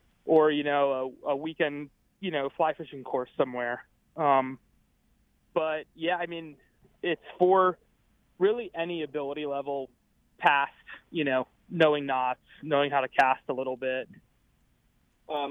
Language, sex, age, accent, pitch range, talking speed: English, male, 30-49, American, 140-165 Hz, 140 wpm